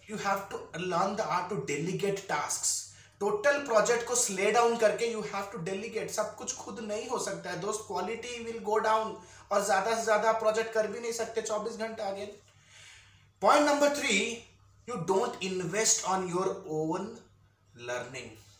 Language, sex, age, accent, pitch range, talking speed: Hindi, male, 20-39, native, 180-230 Hz, 120 wpm